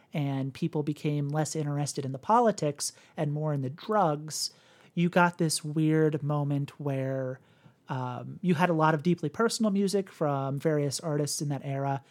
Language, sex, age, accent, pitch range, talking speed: English, male, 30-49, American, 145-175 Hz, 170 wpm